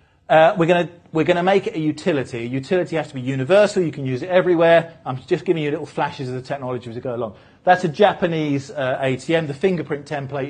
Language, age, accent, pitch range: English, 40-59, British, 125-170 Hz